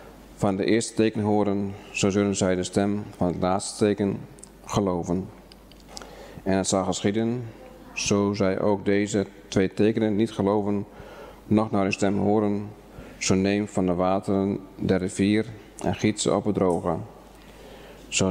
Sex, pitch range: male, 95-105 Hz